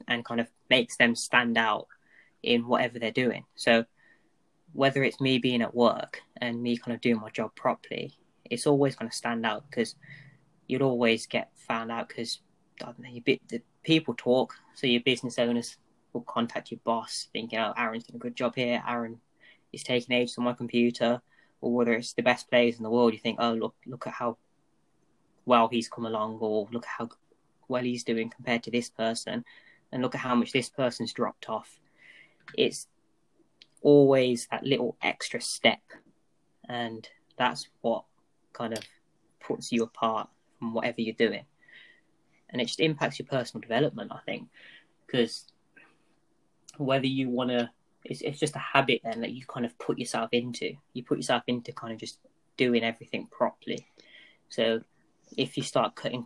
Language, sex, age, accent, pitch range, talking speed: English, female, 10-29, British, 115-130 Hz, 180 wpm